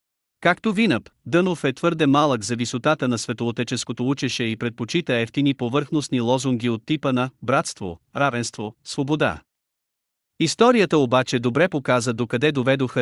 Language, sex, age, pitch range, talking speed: Bulgarian, male, 40-59, 125-150 Hz, 135 wpm